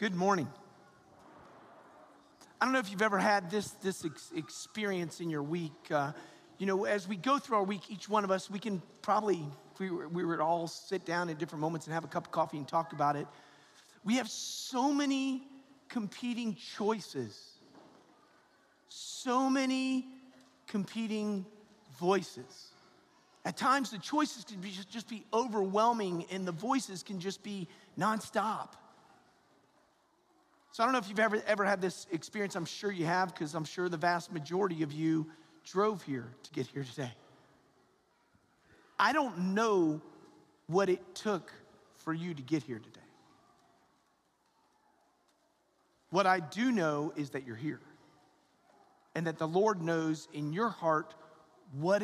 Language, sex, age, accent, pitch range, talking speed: English, male, 40-59, American, 160-215 Hz, 160 wpm